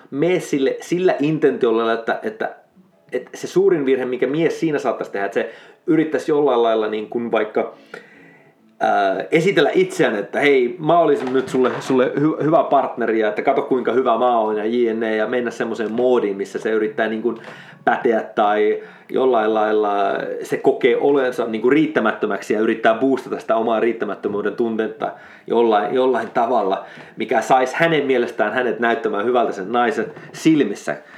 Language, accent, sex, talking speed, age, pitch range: Finnish, native, male, 150 wpm, 30-49, 115-150 Hz